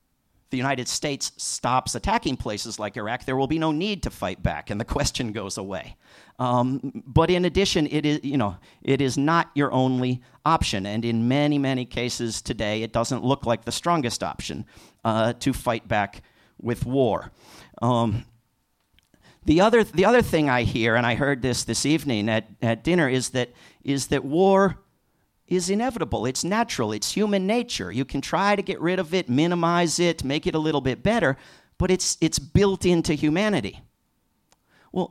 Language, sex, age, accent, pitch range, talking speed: English, male, 50-69, American, 125-185 Hz, 180 wpm